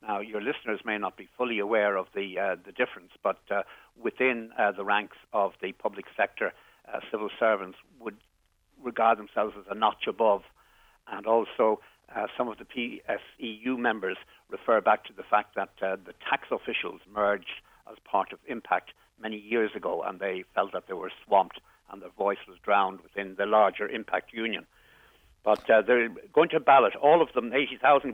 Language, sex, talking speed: English, male, 185 wpm